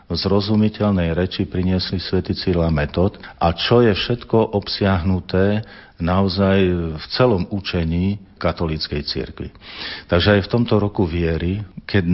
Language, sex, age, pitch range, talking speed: Slovak, male, 50-69, 90-105 Hz, 125 wpm